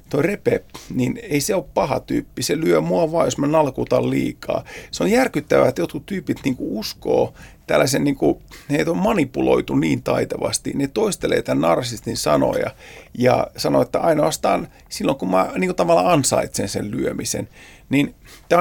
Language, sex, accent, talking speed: Finnish, male, native, 155 wpm